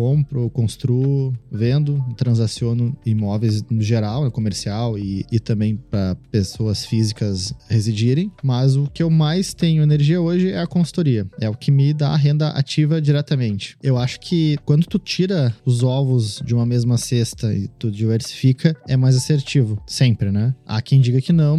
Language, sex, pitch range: Portuguese, male, 120-150 Hz